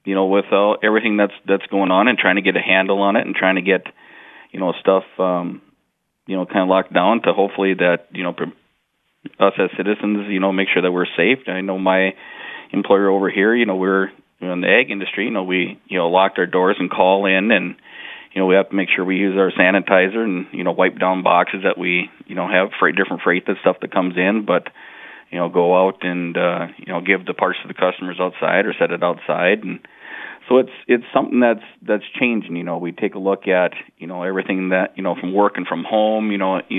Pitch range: 90-100 Hz